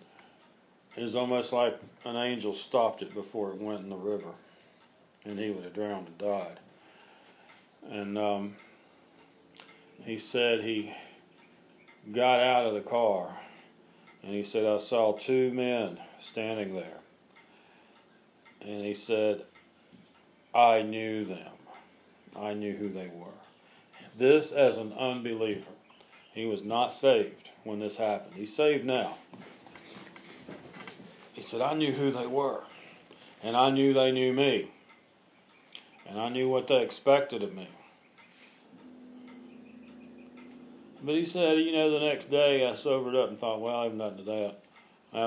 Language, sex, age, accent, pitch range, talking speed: English, male, 40-59, American, 105-130 Hz, 140 wpm